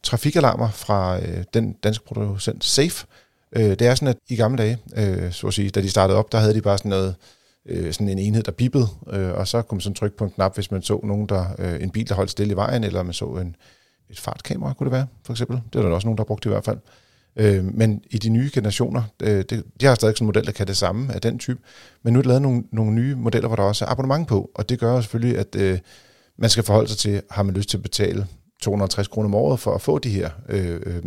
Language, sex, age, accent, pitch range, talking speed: Danish, male, 40-59, native, 100-120 Hz, 275 wpm